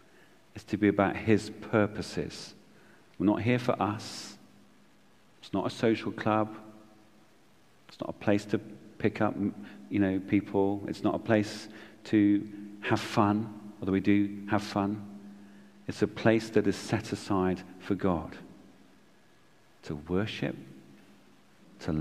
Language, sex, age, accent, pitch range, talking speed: English, male, 40-59, British, 95-110 Hz, 135 wpm